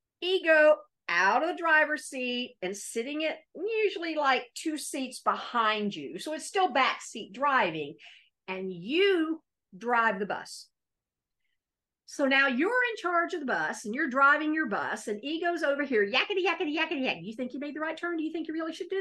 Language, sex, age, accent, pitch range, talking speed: English, female, 50-69, American, 225-345 Hz, 190 wpm